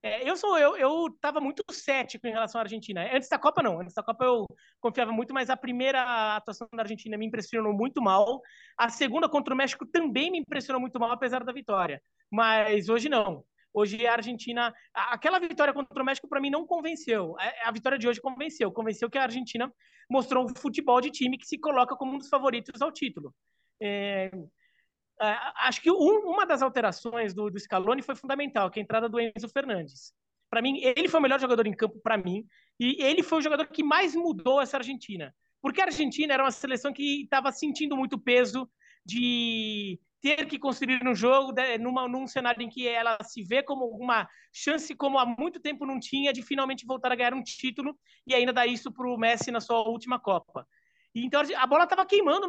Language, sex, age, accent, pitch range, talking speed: Portuguese, male, 20-39, Brazilian, 230-280 Hz, 205 wpm